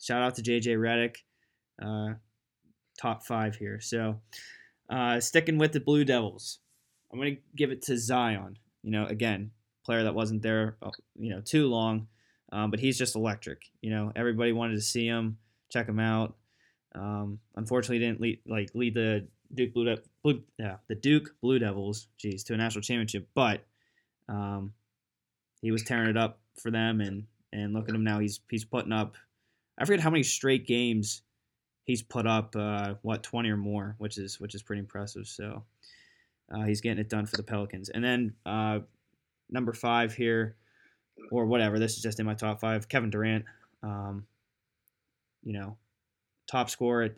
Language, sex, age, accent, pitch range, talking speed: English, male, 10-29, American, 105-120 Hz, 175 wpm